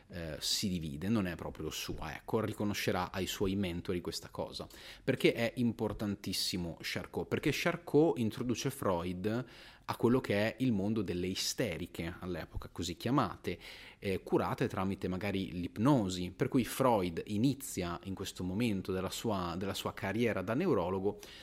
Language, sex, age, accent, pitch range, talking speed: Italian, male, 30-49, native, 90-115 Hz, 145 wpm